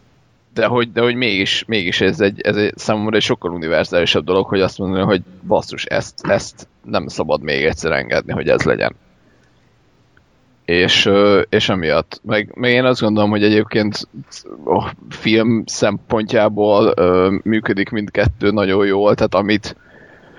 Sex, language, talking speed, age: male, Hungarian, 145 wpm, 30-49